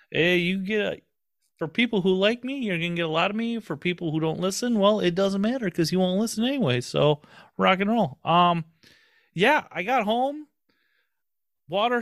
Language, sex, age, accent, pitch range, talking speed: English, male, 30-49, American, 175-240 Hz, 200 wpm